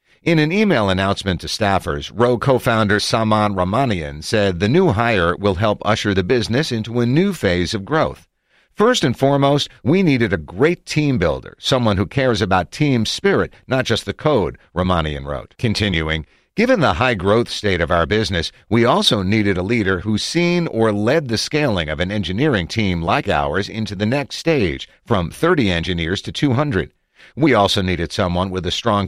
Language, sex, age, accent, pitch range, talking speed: English, male, 50-69, American, 90-130 Hz, 180 wpm